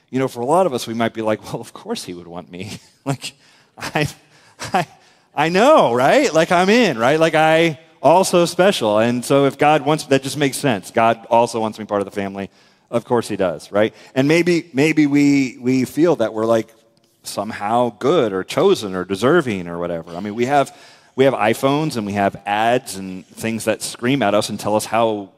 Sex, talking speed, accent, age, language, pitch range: male, 220 wpm, American, 30-49, English, 100-135 Hz